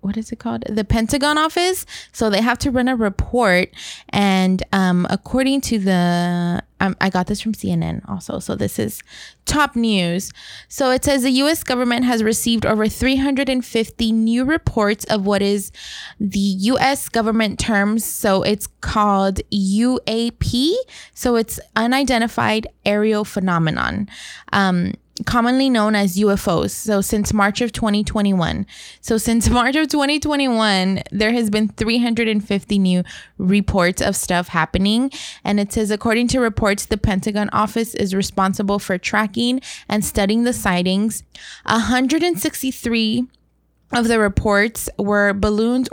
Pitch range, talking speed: 195-235 Hz, 140 wpm